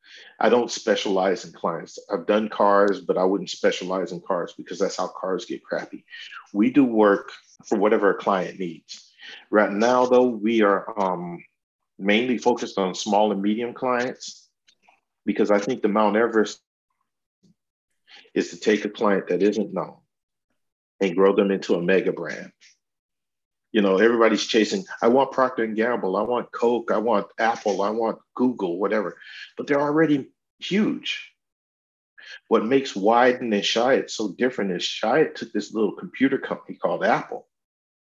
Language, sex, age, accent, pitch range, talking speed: English, male, 40-59, American, 100-125 Hz, 160 wpm